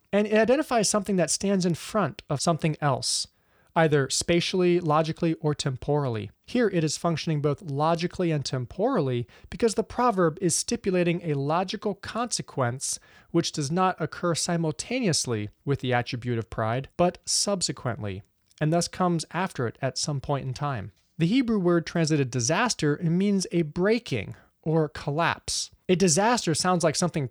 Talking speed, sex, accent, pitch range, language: 150 wpm, male, American, 135-180 Hz, English